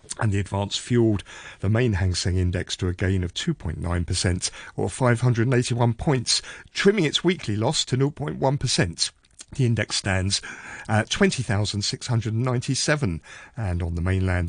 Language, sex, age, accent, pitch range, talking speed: English, male, 50-69, British, 95-140 Hz, 135 wpm